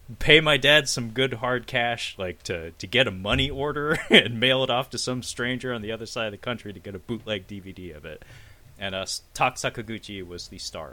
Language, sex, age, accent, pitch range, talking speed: English, male, 30-49, American, 90-120 Hz, 230 wpm